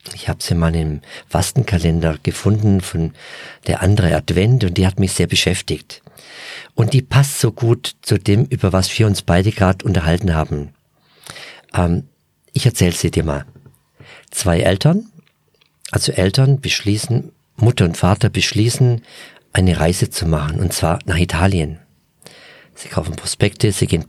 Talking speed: 150 wpm